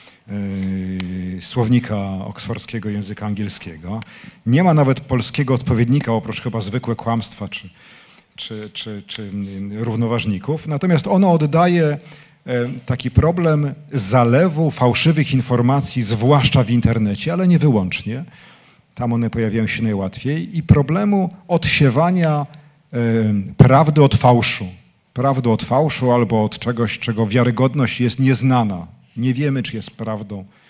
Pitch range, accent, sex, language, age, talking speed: 110-150 Hz, native, male, Polish, 40-59, 110 wpm